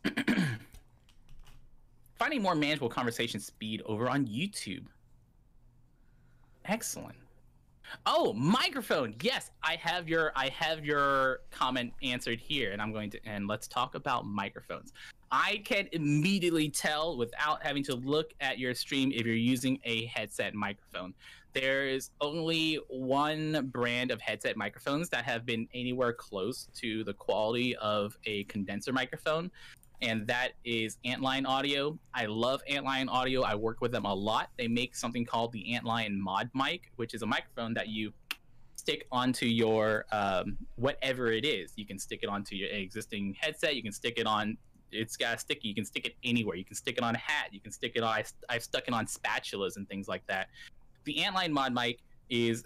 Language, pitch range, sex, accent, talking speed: English, 110-135 Hz, male, American, 170 wpm